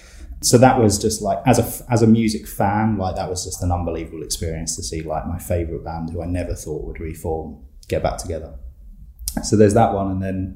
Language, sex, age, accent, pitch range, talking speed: English, male, 20-39, British, 80-100 Hz, 215 wpm